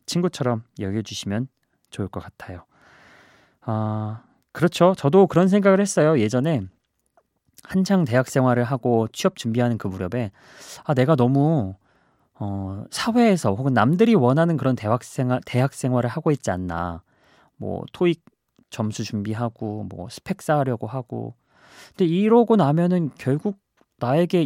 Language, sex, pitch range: Korean, male, 115-170 Hz